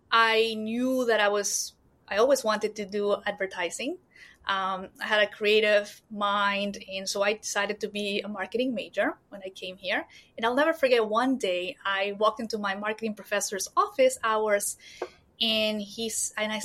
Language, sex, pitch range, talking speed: English, female, 205-265 Hz, 175 wpm